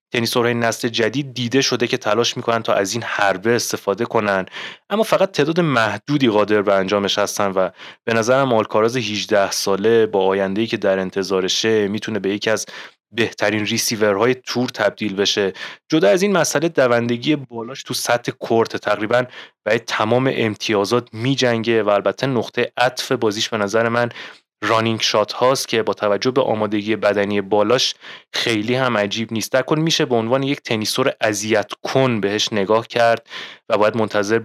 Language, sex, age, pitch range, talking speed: Persian, male, 30-49, 100-125 Hz, 160 wpm